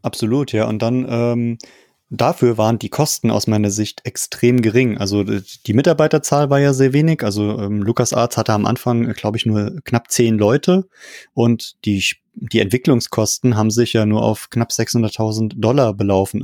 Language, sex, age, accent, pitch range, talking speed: German, male, 20-39, German, 110-125 Hz, 170 wpm